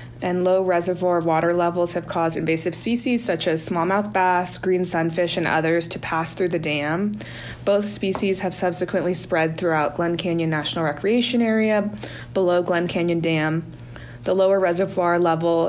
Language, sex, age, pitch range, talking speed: English, female, 20-39, 170-195 Hz, 155 wpm